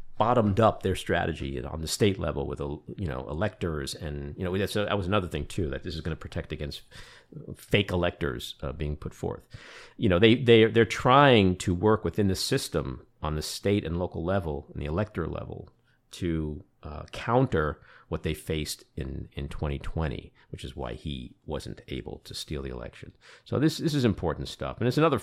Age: 50-69